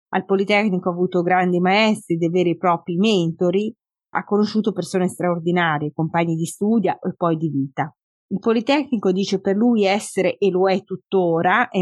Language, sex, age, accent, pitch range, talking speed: Italian, female, 30-49, native, 170-205 Hz, 170 wpm